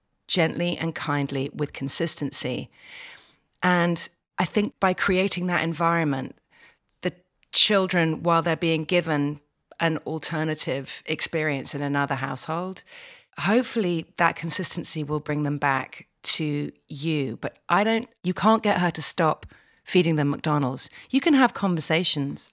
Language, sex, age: English, female, 40-59